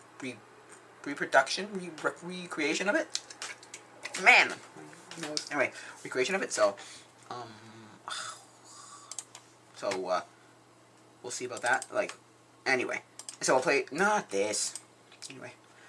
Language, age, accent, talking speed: English, 20-39, American, 100 wpm